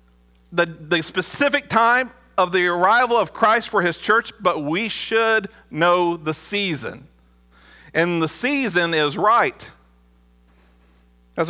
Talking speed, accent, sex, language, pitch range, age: 125 wpm, American, male, English, 155-245 Hz, 50-69